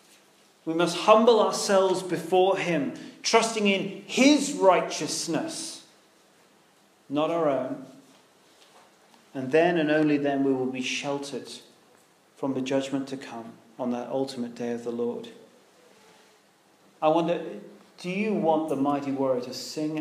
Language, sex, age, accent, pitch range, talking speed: English, male, 40-59, British, 135-170 Hz, 130 wpm